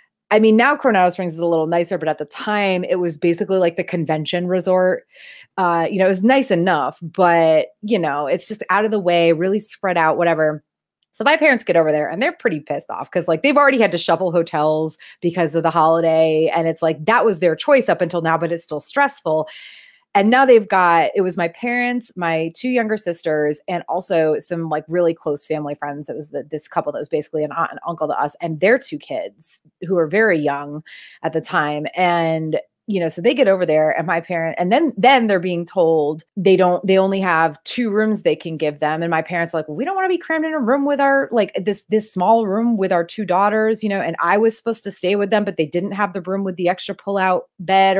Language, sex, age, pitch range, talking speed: English, female, 30-49, 165-220 Hz, 245 wpm